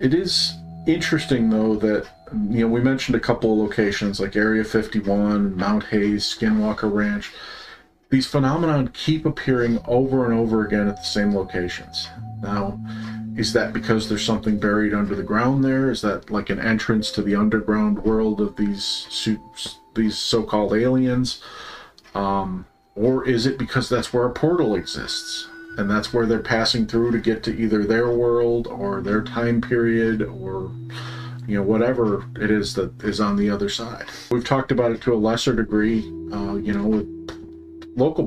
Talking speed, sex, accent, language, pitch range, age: 170 wpm, male, American, English, 105-125 Hz, 40-59